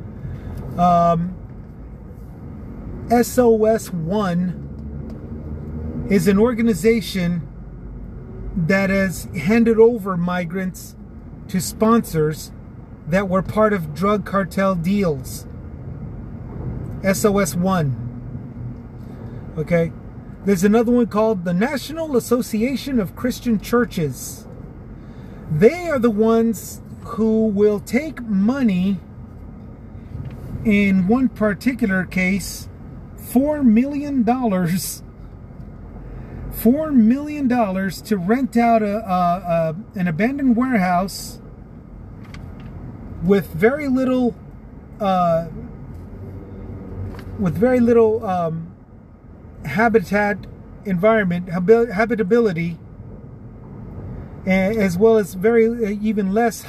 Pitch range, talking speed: 135-225 Hz, 80 wpm